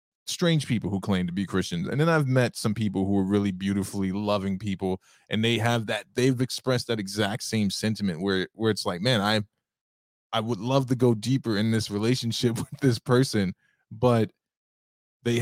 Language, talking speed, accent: English, 190 wpm, American